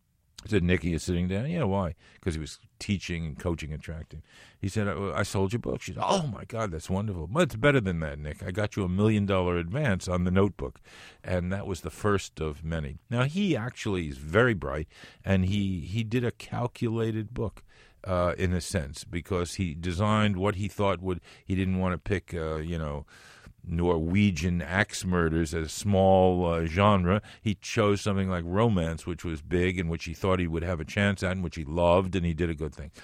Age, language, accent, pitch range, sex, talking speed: 50-69, English, American, 90-110 Hz, male, 225 wpm